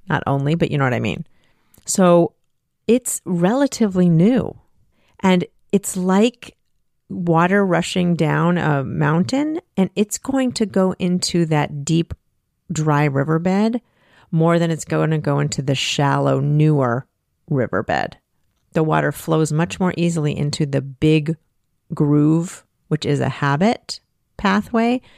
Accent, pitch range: American, 150-195 Hz